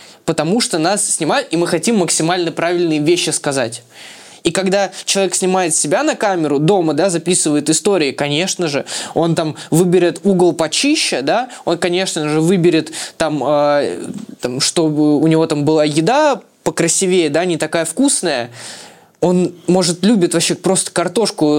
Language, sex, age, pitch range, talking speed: Russian, male, 20-39, 155-195 Hz, 145 wpm